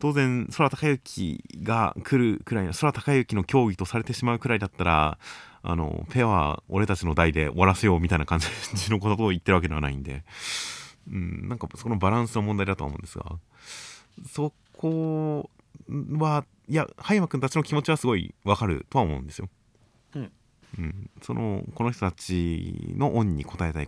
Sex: male